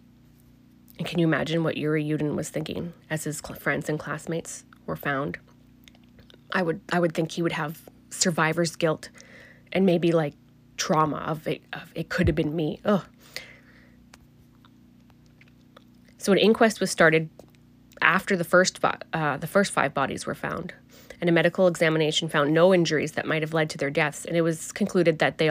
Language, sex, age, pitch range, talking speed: English, female, 20-39, 150-175 Hz, 170 wpm